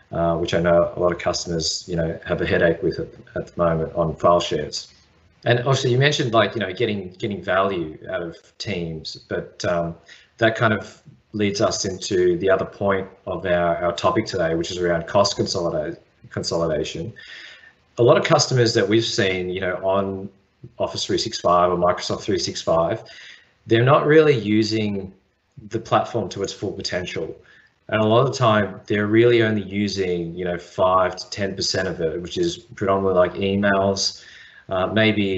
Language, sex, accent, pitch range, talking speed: English, male, Australian, 90-110 Hz, 175 wpm